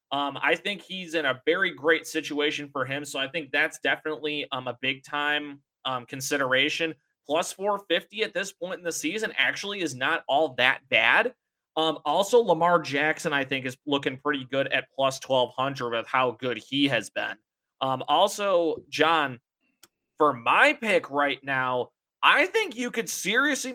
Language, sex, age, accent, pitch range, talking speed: English, male, 30-49, American, 135-170 Hz, 165 wpm